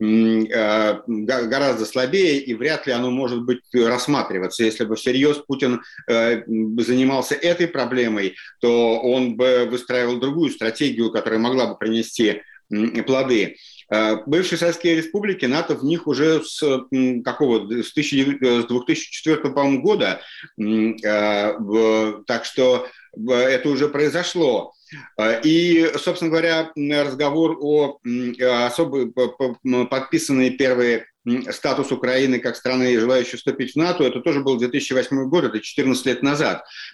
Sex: male